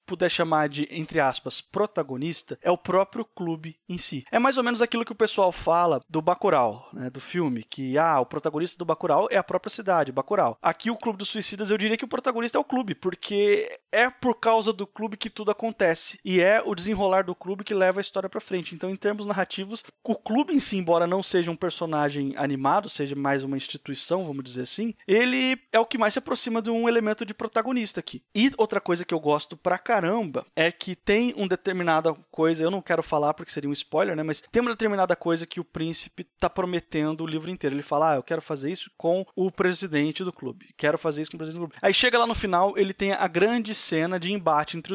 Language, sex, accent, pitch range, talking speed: Portuguese, male, Brazilian, 155-210 Hz, 235 wpm